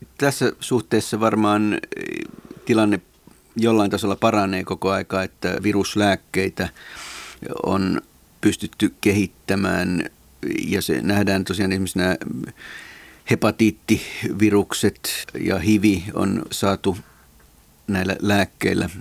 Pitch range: 90-105 Hz